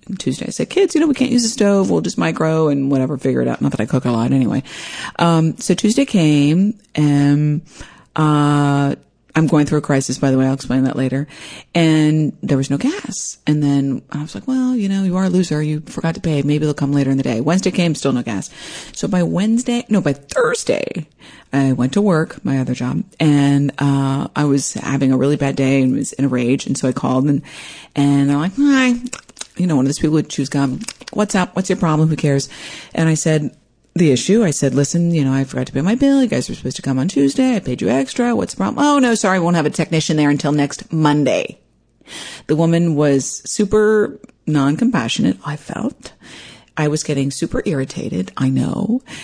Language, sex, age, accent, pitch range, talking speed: English, female, 30-49, American, 140-185 Hz, 225 wpm